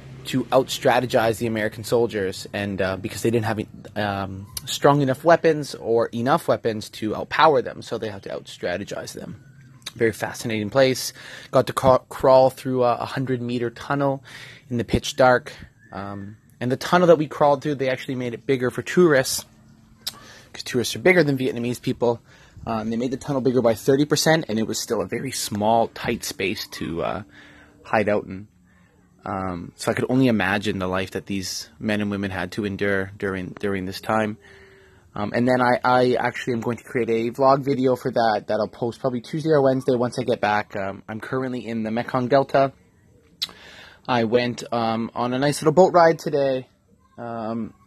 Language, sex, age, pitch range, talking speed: English, male, 20-39, 110-135 Hz, 190 wpm